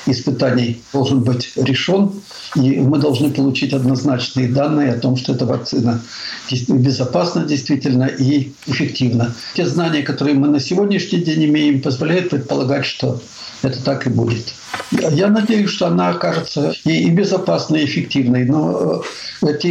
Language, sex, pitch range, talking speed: Russian, male, 130-155 Hz, 135 wpm